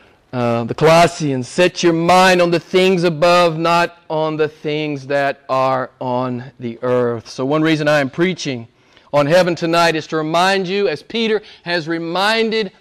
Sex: male